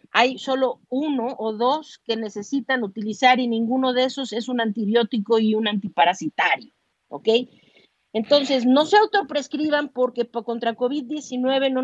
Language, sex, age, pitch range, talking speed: Spanish, female, 40-59, 220-265 Hz, 135 wpm